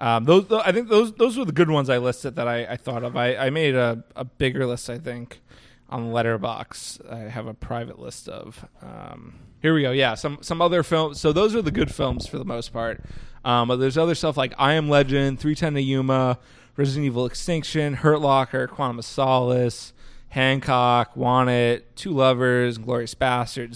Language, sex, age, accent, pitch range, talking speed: English, male, 20-39, American, 120-150 Hz, 205 wpm